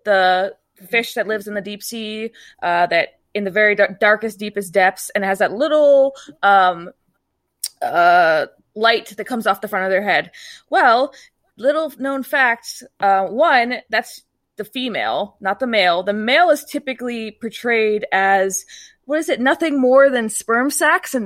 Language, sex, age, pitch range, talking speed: English, female, 20-39, 205-260 Hz, 165 wpm